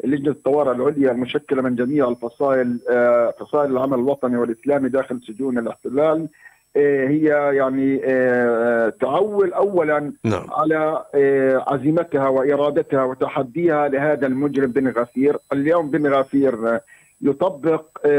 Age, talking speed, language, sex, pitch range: 50-69, 100 wpm, Arabic, male, 135-155 Hz